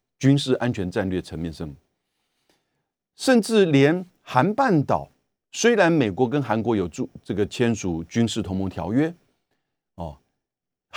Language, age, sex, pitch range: Chinese, 50-69, male, 100-145 Hz